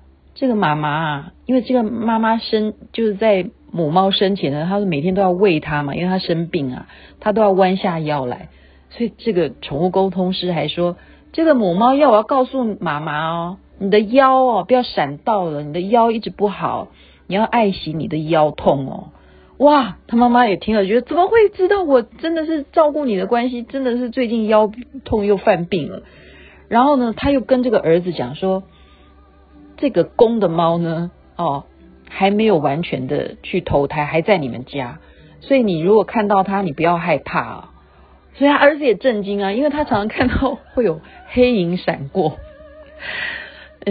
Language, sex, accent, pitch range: Chinese, female, native, 175-250 Hz